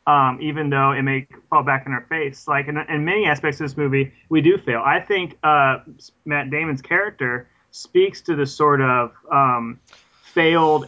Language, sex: English, male